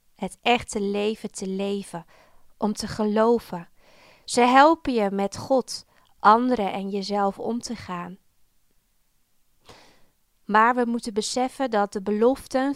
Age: 20-39